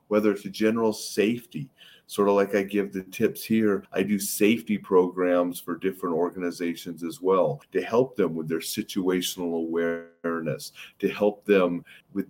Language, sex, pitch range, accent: English, male, 95-130 Hz, American